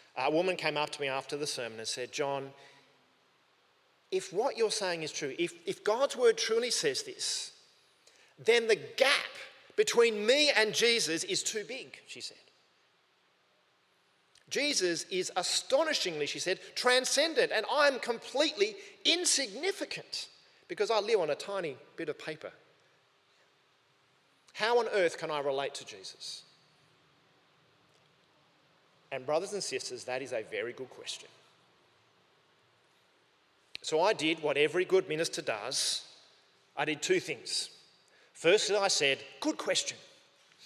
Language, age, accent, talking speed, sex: English, 40-59, Australian, 135 wpm, male